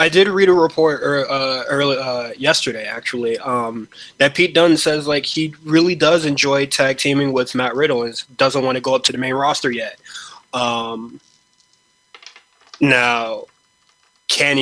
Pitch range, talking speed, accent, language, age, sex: 115-140 Hz, 160 wpm, American, English, 20-39, male